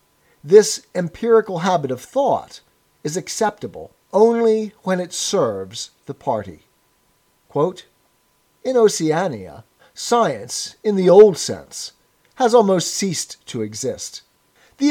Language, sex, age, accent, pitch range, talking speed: English, male, 50-69, American, 145-220 Hz, 110 wpm